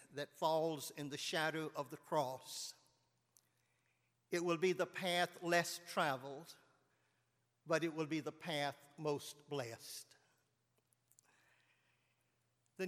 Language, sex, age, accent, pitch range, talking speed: English, male, 50-69, American, 135-165 Hz, 110 wpm